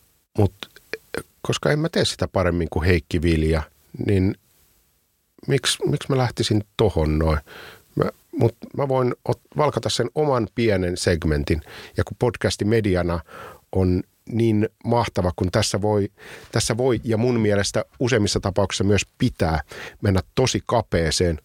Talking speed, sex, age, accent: 135 wpm, male, 50-69, native